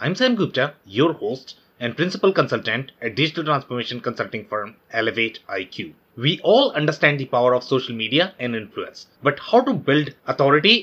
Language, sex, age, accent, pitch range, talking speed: English, male, 30-49, Indian, 135-195 Hz, 165 wpm